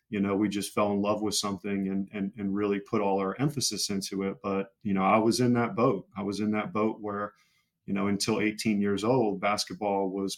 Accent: American